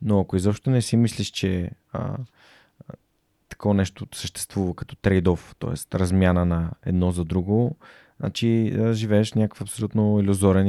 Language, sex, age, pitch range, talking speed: Bulgarian, male, 20-39, 95-110 Hz, 145 wpm